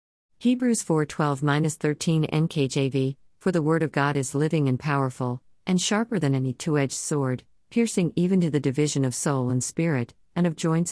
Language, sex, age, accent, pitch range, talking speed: English, female, 50-69, American, 130-170 Hz, 165 wpm